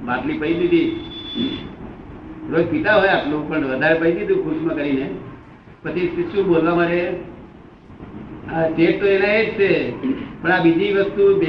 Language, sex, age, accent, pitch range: Gujarati, male, 60-79, native, 165-195 Hz